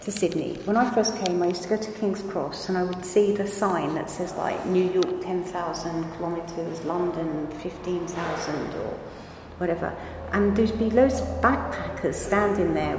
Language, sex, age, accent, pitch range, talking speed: English, female, 40-59, British, 185-220 Hz, 175 wpm